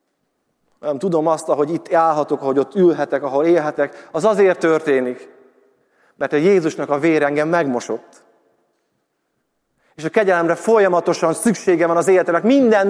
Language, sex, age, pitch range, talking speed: Hungarian, male, 30-49, 155-205 Hz, 140 wpm